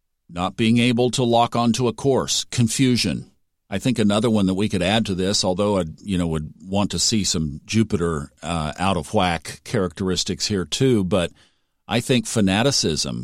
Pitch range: 95-120 Hz